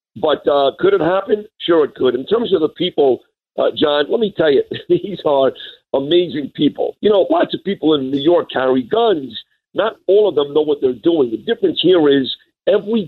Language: English